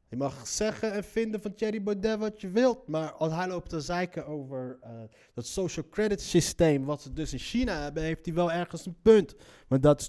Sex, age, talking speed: male, 30-49, 225 wpm